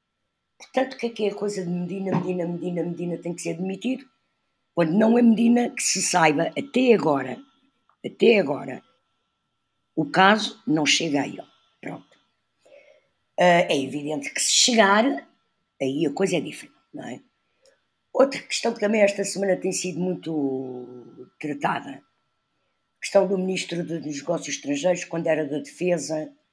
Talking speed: 150 wpm